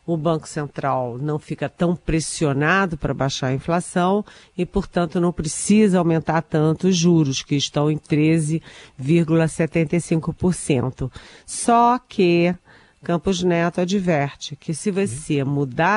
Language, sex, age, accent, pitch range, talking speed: Portuguese, female, 50-69, Brazilian, 150-190 Hz, 120 wpm